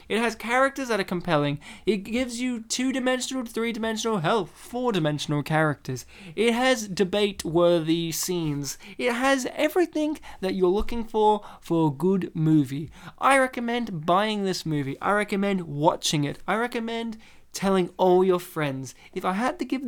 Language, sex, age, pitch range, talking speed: English, male, 20-39, 155-225 Hz, 150 wpm